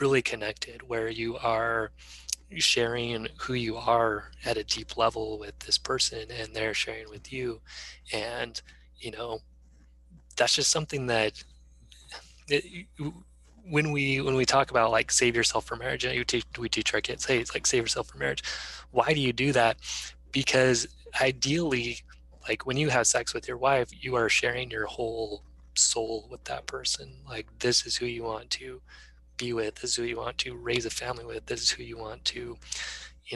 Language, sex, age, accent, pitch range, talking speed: English, male, 20-39, American, 105-125 Hz, 180 wpm